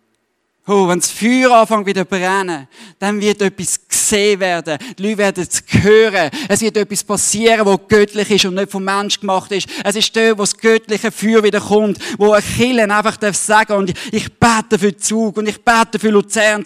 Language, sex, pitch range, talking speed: English, male, 185-220 Hz, 200 wpm